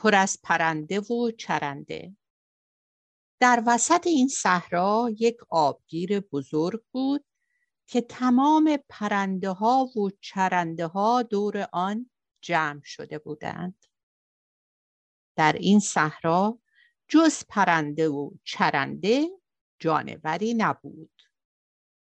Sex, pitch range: female, 165-245 Hz